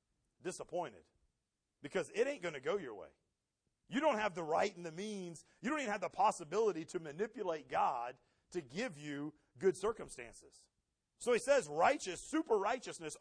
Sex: male